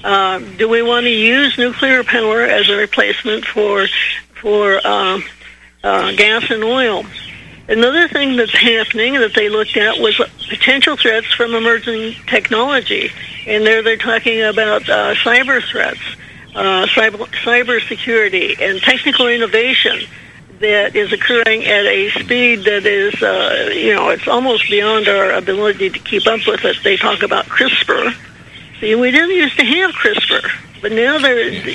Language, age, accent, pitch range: English, 60-79, American, 210-260 Hz